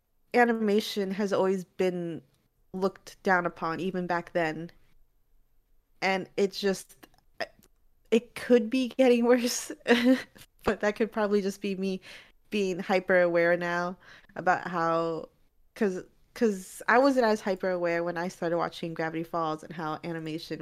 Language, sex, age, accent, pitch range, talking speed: English, female, 20-39, American, 170-210 Hz, 135 wpm